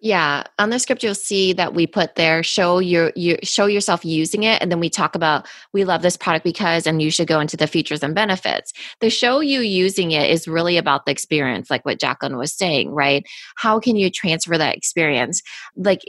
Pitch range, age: 155-200 Hz, 20-39